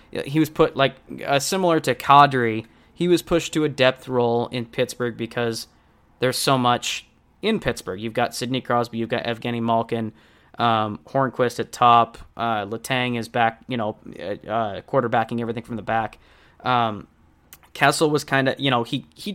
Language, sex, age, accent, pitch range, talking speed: English, male, 20-39, American, 115-130 Hz, 175 wpm